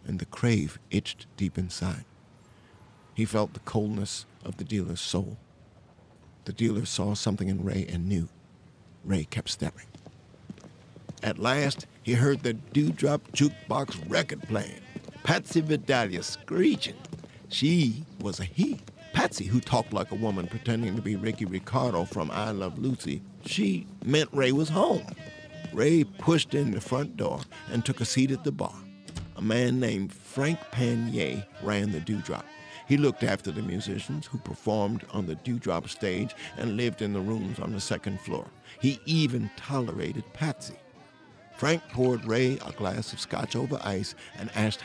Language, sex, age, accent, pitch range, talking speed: English, male, 60-79, American, 100-135 Hz, 155 wpm